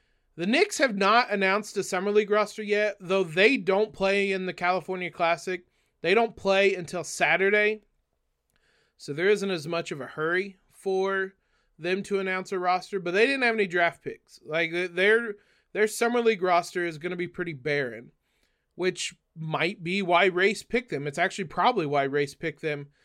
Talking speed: 180 wpm